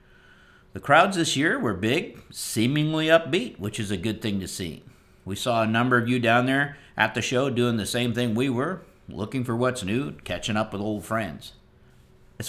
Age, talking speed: 50-69, 200 wpm